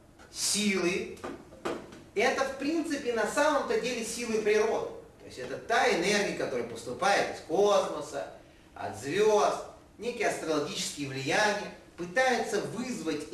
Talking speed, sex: 110 wpm, male